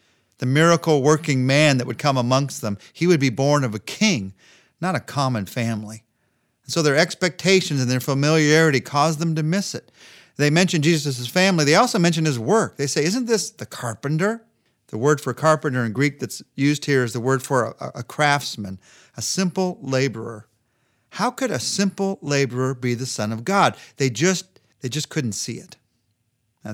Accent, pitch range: American, 120-160 Hz